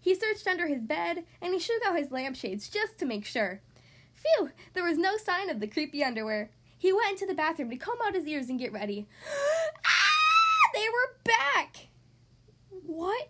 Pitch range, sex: 230-345 Hz, female